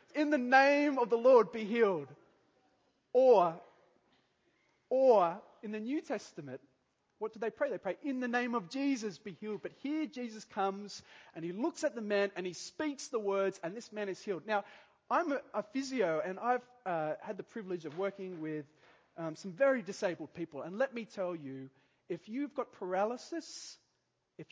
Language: English